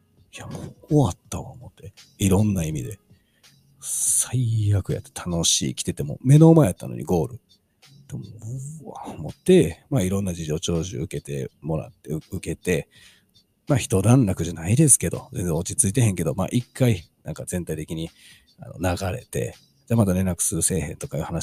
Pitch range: 90-135 Hz